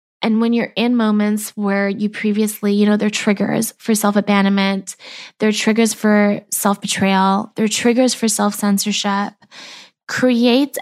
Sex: female